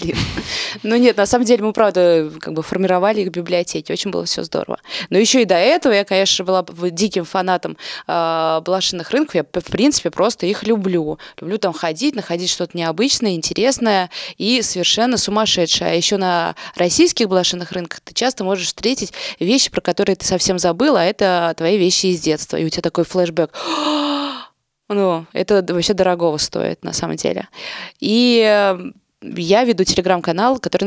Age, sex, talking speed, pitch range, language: 20-39, female, 165 wpm, 175-215 Hz, Russian